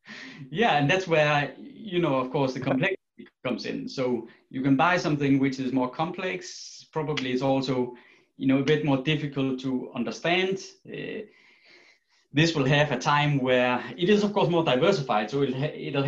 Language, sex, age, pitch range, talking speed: English, male, 20-39, 115-155 Hz, 180 wpm